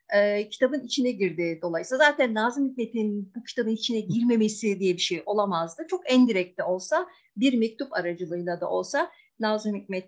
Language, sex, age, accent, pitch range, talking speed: Turkish, female, 50-69, native, 190-265 Hz, 150 wpm